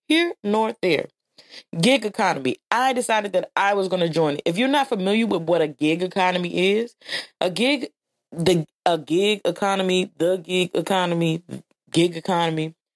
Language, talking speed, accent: English, 160 wpm, American